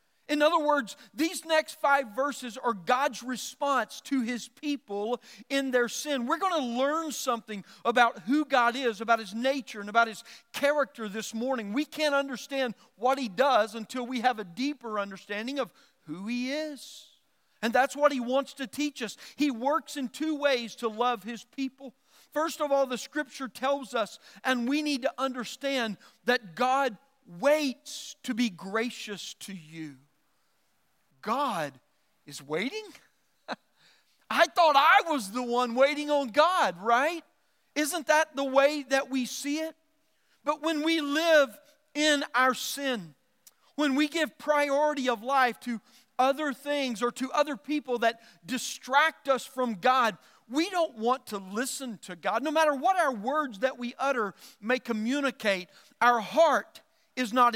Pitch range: 235-290 Hz